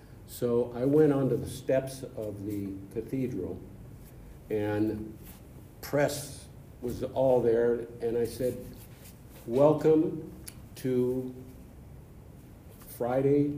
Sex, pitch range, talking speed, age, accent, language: male, 110-135 Hz, 90 wpm, 50-69, American, English